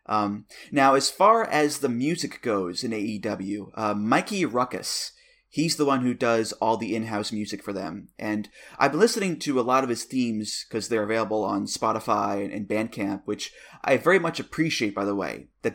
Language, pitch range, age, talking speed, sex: English, 110-145 Hz, 20-39, 190 wpm, male